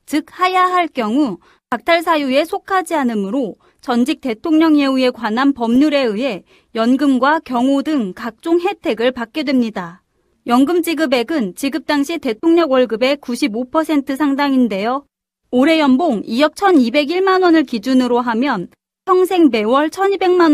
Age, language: 30-49, Korean